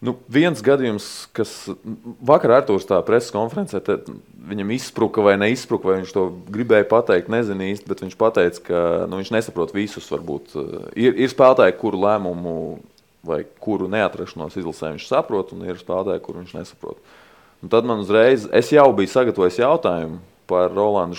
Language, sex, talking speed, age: English, male, 155 wpm, 20-39